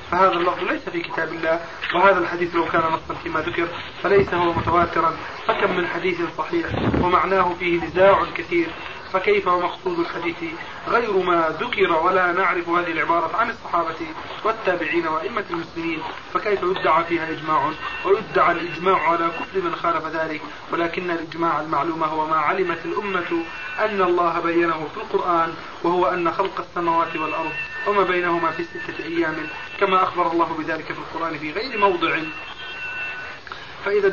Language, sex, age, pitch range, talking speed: Arabic, male, 30-49, 165-195 Hz, 145 wpm